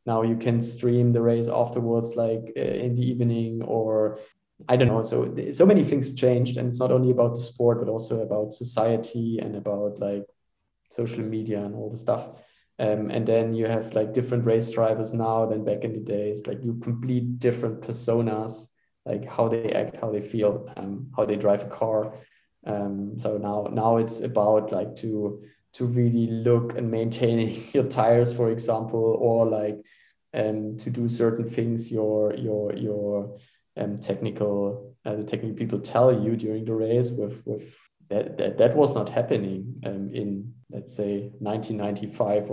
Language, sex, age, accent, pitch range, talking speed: English, male, 20-39, German, 105-120 Hz, 175 wpm